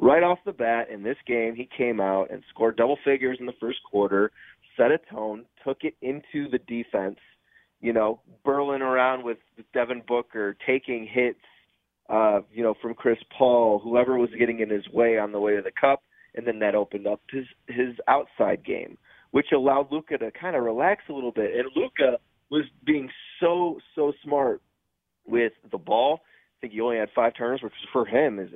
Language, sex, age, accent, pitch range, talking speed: English, male, 30-49, American, 105-130 Hz, 195 wpm